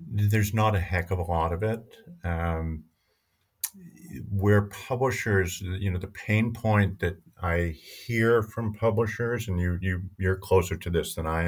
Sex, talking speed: male, 165 wpm